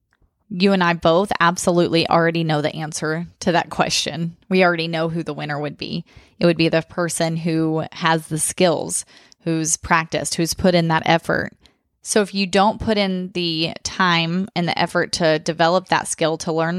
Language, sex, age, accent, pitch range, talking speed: English, female, 20-39, American, 165-200 Hz, 190 wpm